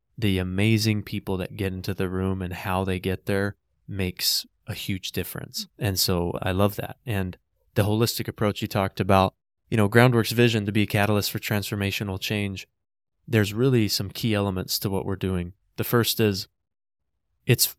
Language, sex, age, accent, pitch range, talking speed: English, male, 20-39, American, 95-115 Hz, 180 wpm